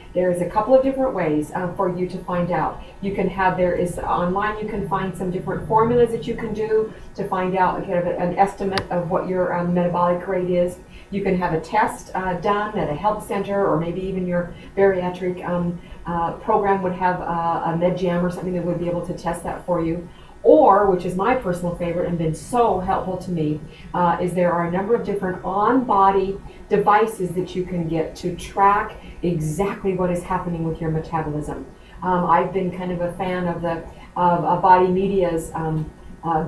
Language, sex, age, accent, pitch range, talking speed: English, female, 40-59, American, 175-200 Hz, 210 wpm